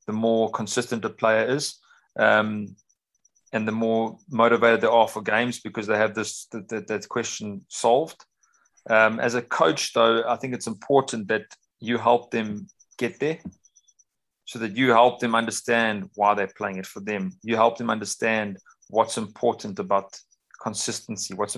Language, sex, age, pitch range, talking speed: English, male, 30-49, 105-120 Hz, 165 wpm